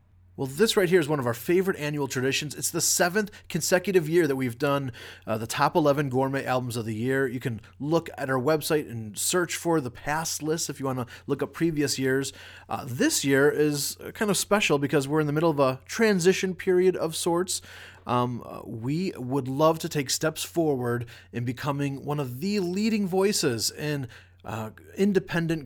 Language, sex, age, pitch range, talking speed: English, male, 30-49, 125-165 Hz, 195 wpm